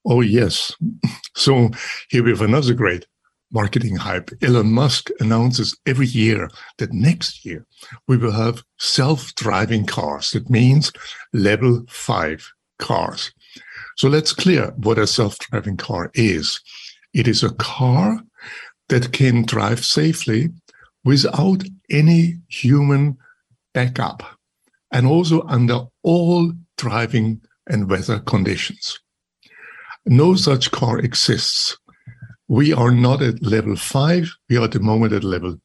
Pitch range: 115-155 Hz